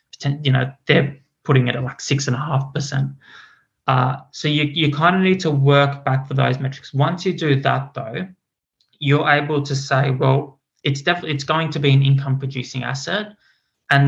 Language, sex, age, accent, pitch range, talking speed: English, male, 20-39, Australian, 135-140 Hz, 195 wpm